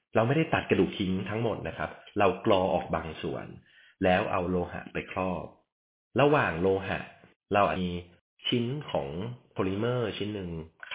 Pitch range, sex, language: 85-115 Hz, male, Thai